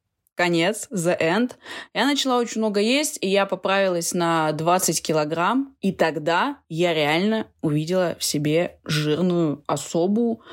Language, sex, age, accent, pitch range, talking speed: Russian, female, 20-39, native, 155-190 Hz, 130 wpm